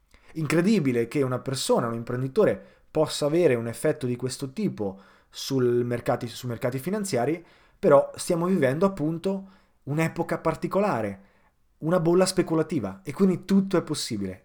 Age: 30-49